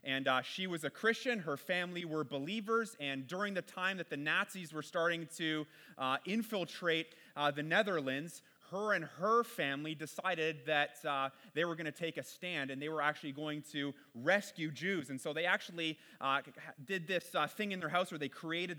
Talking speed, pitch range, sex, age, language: 200 wpm, 140-175 Hz, male, 30-49, English